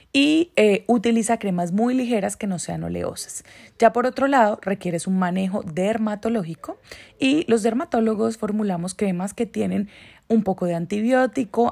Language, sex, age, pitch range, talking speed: Spanish, female, 30-49, 190-235 Hz, 150 wpm